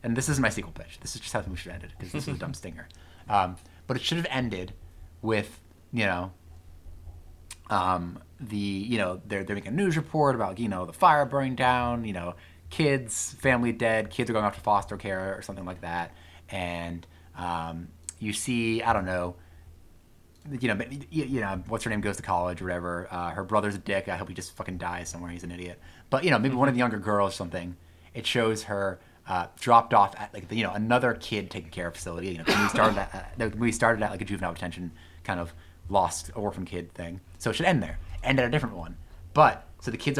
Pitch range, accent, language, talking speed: 85-115 Hz, American, English, 230 wpm